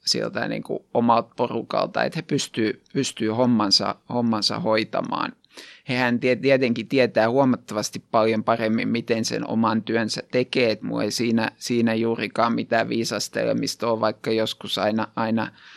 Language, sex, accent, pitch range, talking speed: Finnish, male, native, 115-140 Hz, 135 wpm